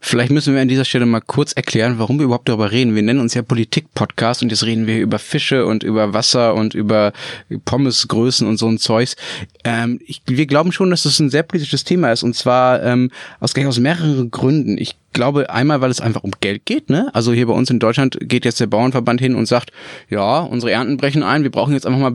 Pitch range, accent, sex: 115-140 Hz, German, male